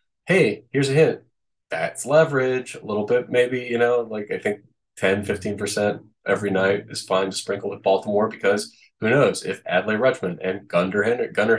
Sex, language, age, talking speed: male, English, 20-39, 170 wpm